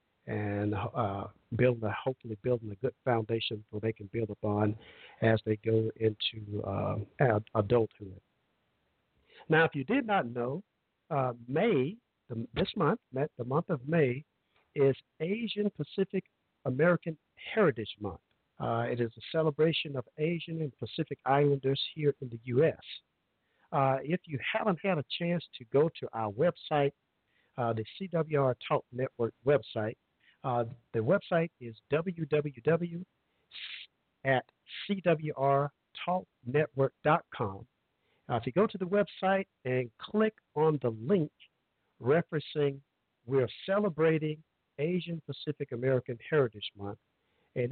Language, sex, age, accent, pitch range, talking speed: English, male, 50-69, American, 115-160 Hz, 125 wpm